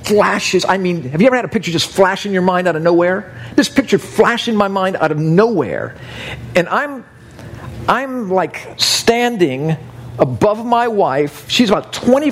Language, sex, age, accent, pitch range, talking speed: English, male, 50-69, American, 120-185 Hz, 170 wpm